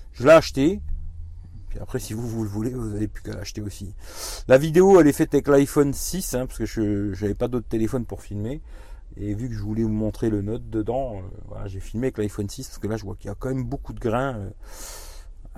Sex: male